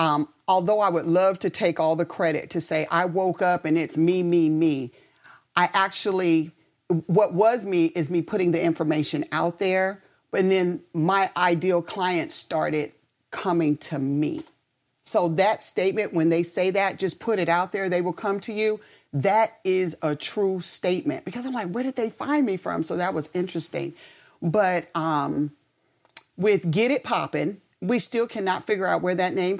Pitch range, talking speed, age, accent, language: 170-210 Hz, 180 wpm, 40-59, American, English